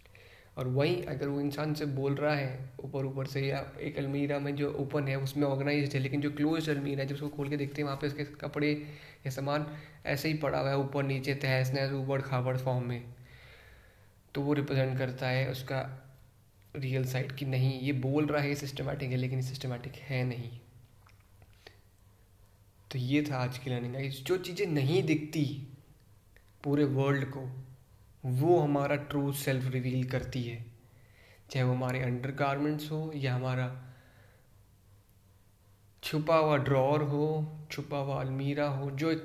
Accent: native